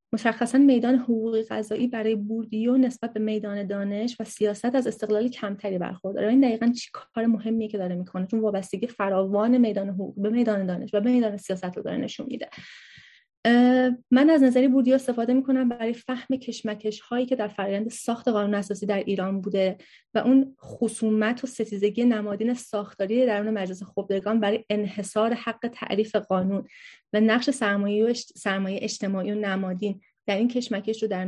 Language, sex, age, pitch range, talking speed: Persian, female, 30-49, 200-240 Hz, 165 wpm